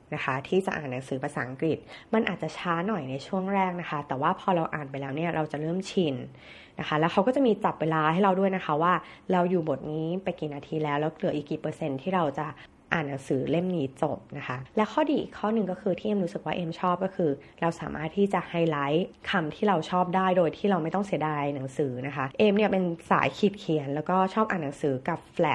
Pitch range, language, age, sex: 150-190 Hz, Thai, 20-39, female